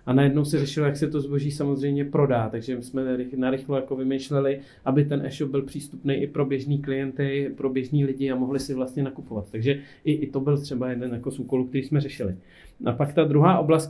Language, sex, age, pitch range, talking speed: Czech, male, 40-59, 125-145 Hz, 210 wpm